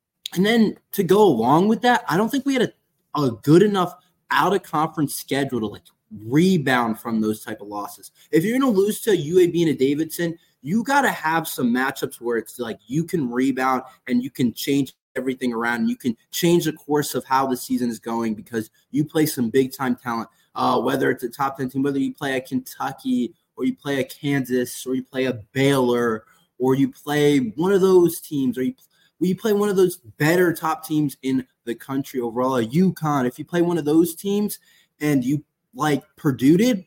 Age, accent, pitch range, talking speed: 20-39, American, 130-175 Hz, 210 wpm